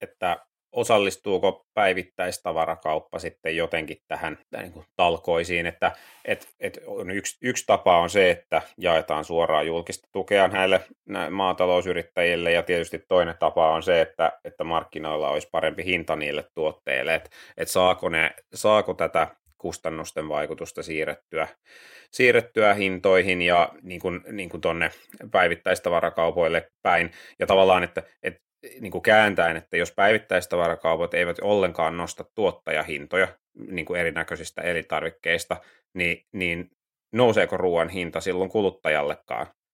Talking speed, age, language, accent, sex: 115 wpm, 30-49, Finnish, native, male